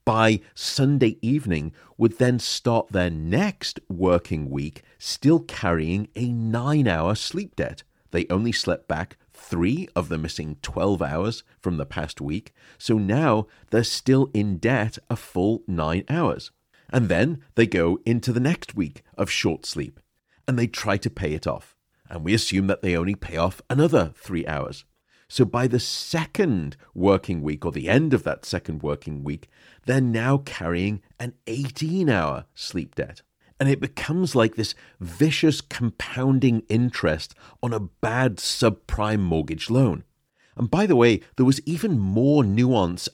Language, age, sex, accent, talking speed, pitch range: English, 40-59, male, British, 155 wpm, 90-130 Hz